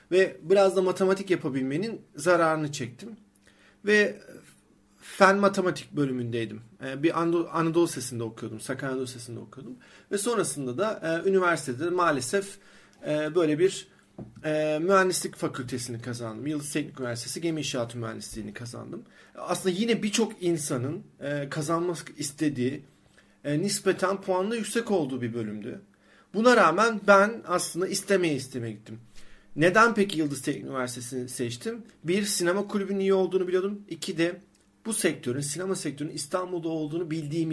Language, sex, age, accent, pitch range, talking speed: Turkish, male, 40-59, native, 130-185 Hz, 130 wpm